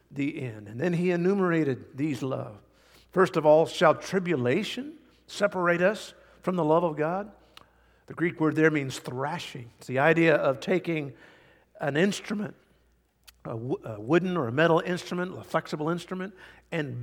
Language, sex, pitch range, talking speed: English, male, 125-175 Hz, 150 wpm